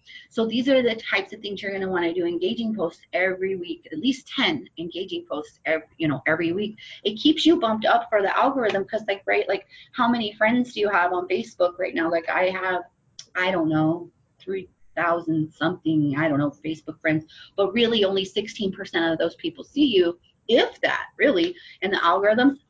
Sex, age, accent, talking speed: female, 30-49, American, 205 wpm